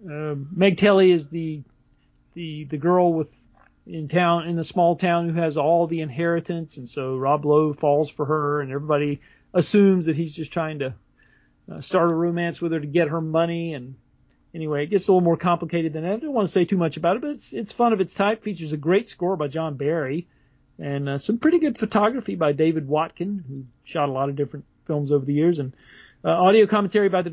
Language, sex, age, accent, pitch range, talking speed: English, male, 40-59, American, 150-185 Hz, 225 wpm